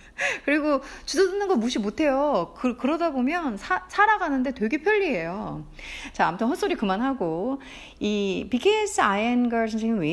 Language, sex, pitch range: Korean, female, 175-285 Hz